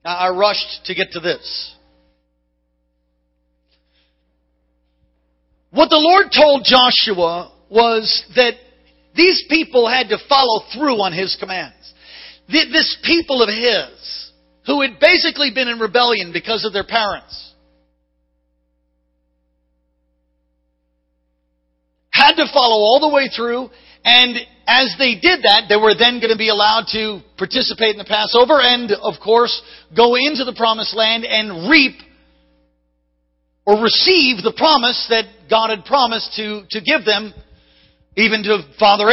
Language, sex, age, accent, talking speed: English, male, 50-69, American, 130 wpm